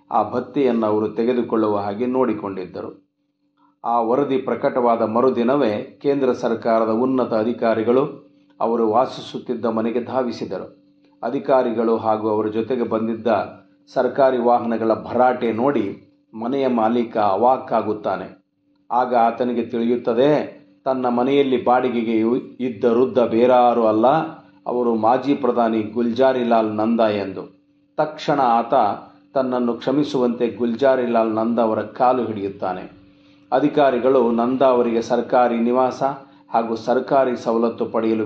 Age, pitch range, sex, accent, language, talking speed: 50-69, 115-130 Hz, male, native, Kannada, 100 wpm